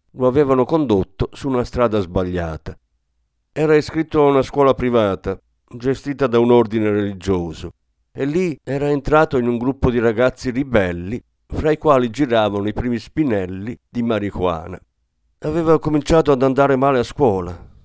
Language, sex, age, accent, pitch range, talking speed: Italian, male, 50-69, native, 95-135 Hz, 150 wpm